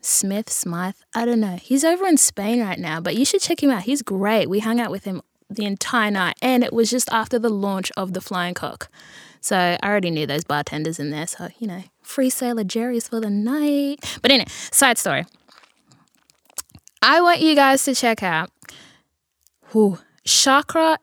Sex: female